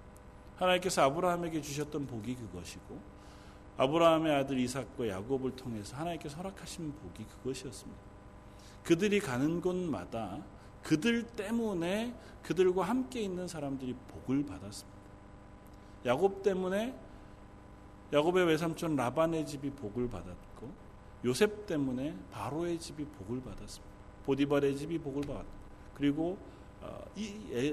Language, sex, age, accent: Korean, male, 40-59, native